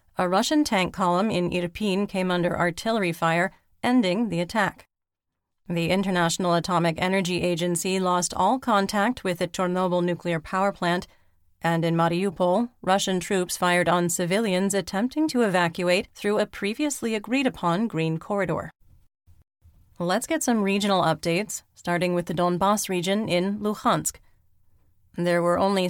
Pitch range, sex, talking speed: 170-200 Hz, female, 135 wpm